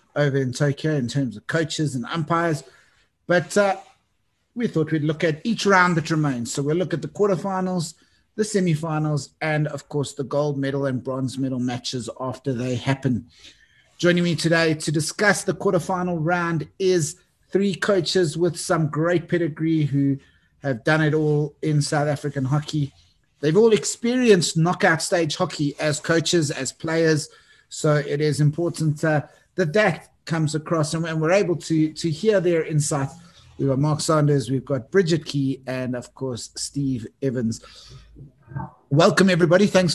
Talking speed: 160 wpm